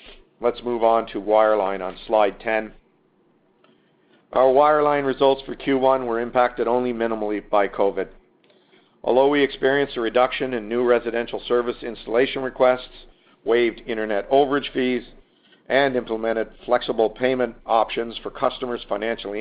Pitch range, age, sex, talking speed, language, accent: 110-135 Hz, 50-69, male, 130 wpm, English, American